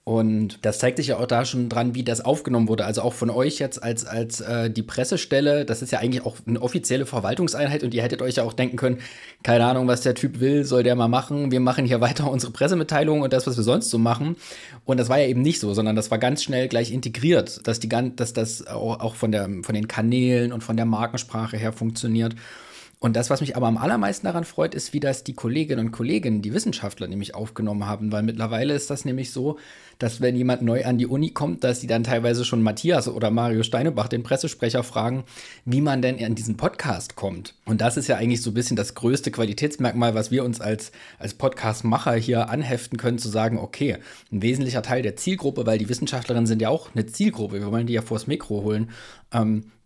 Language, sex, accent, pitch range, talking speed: German, male, German, 115-130 Hz, 230 wpm